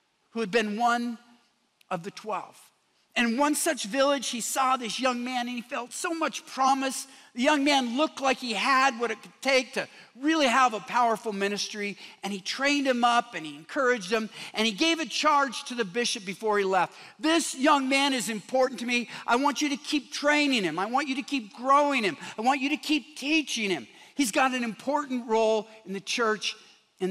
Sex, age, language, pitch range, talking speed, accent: male, 50-69, English, 205-275 Hz, 215 wpm, American